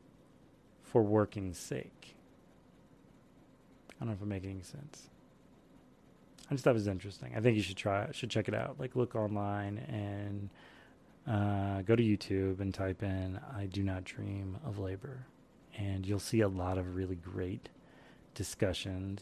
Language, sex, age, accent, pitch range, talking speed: English, male, 30-49, American, 95-115 Hz, 165 wpm